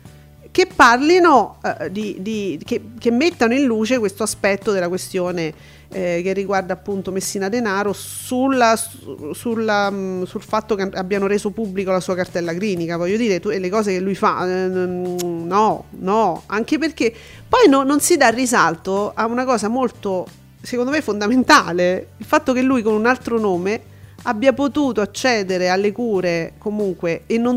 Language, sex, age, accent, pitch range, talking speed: Italian, female, 40-59, native, 190-255 Hz, 160 wpm